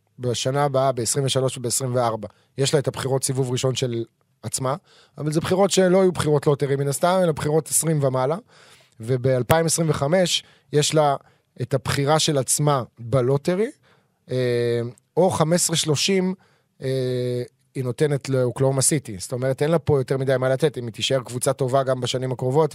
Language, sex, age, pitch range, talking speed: Hebrew, male, 20-39, 125-150 Hz, 155 wpm